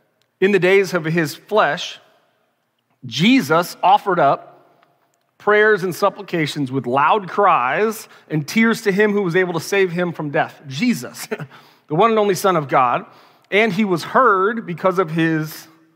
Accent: American